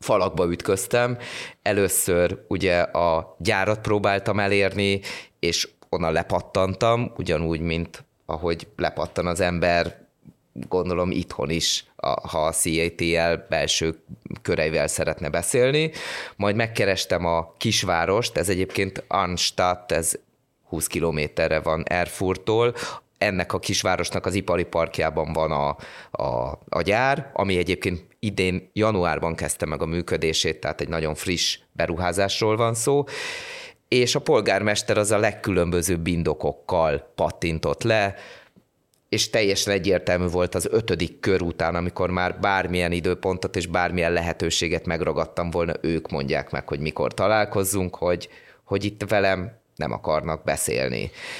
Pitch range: 85-100 Hz